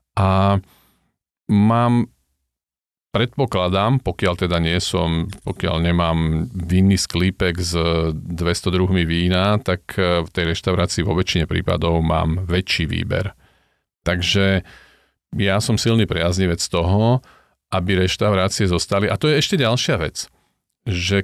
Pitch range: 85-105 Hz